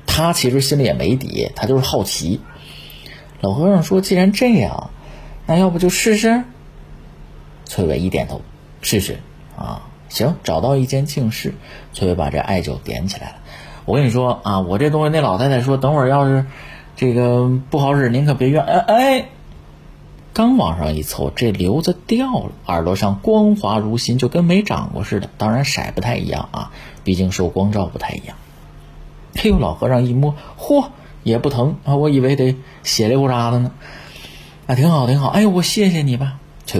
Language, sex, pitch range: Chinese, male, 100-155 Hz